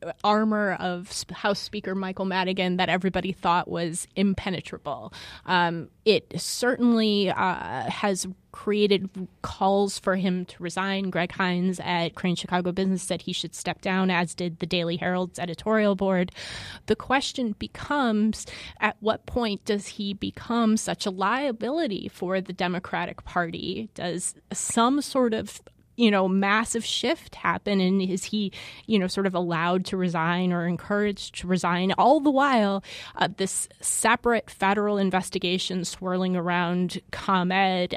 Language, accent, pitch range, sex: English, American, 175-205 Hz, female